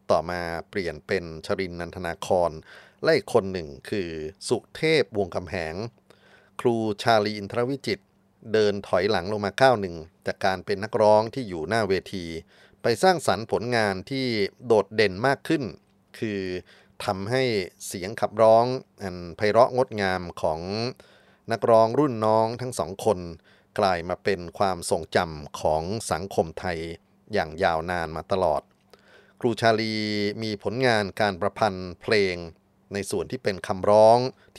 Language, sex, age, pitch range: Thai, male, 30-49, 90-115 Hz